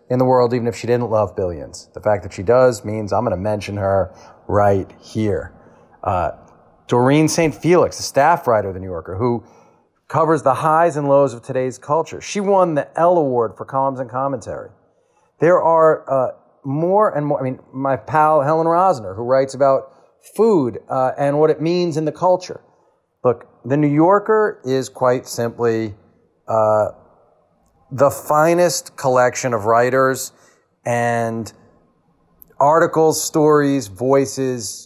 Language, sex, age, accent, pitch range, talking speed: English, male, 40-59, American, 115-155 Hz, 155 wpm